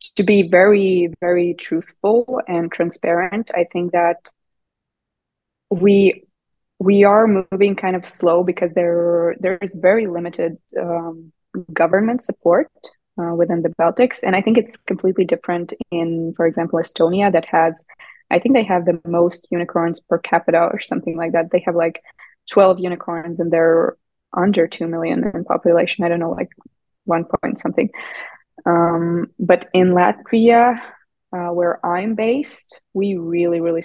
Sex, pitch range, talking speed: female, 170-185 Hz, 150 wpm